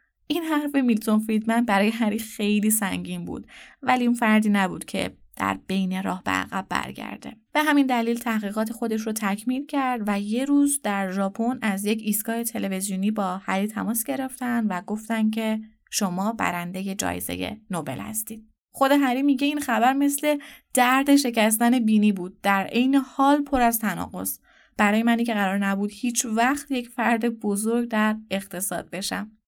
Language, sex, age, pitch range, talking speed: Persian, female, 20-39, 205-255 Hz, 160 wpm